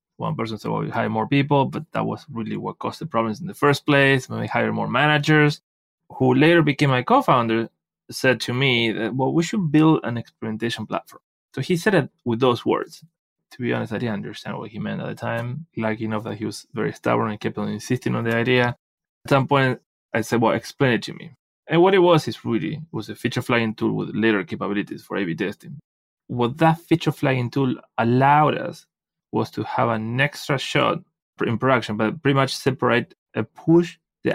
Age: 30-49